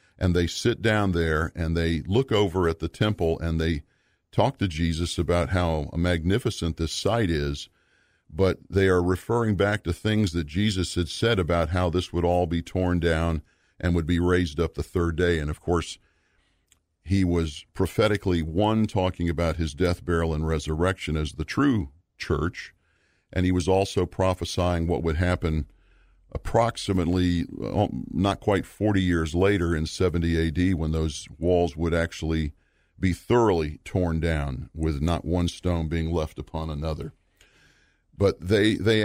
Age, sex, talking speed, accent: 50-69, male, 165 wpm, American